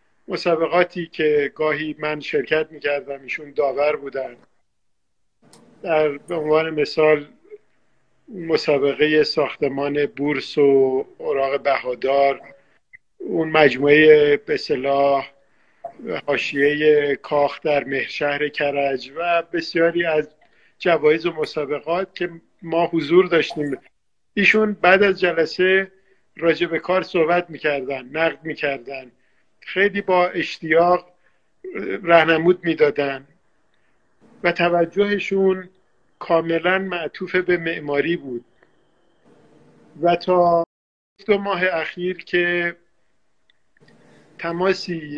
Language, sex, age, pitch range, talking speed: Persian, male, 50-69, 145-175 Hz, 90 wpm